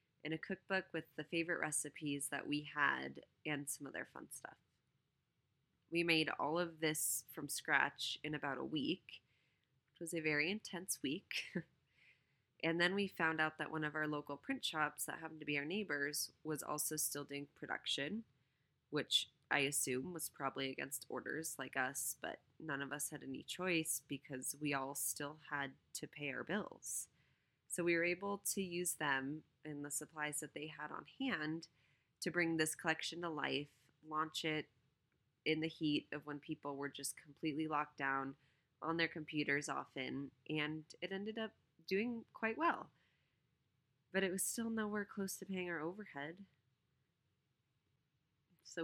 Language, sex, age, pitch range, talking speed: English, female, 20-39, 140-165 Hz, 165 wpm